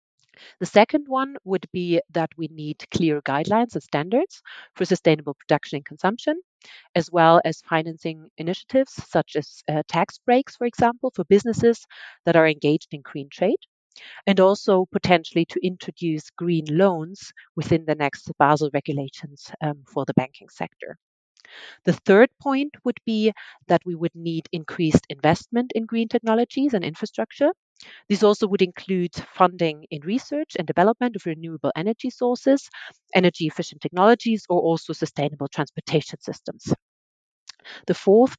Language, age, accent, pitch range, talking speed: English, 40-59, German, 160-220 Hz, 145 wpm